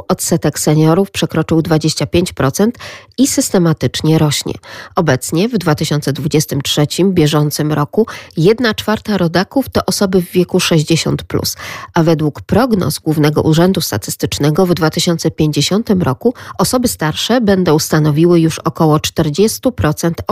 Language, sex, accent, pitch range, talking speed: Polish, female, native, 150-190 Hz, 105 wpm